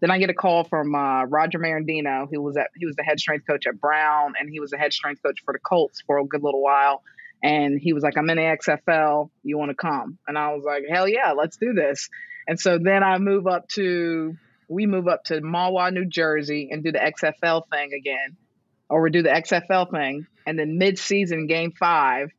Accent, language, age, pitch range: American, English, 30-49, 155-205 Hz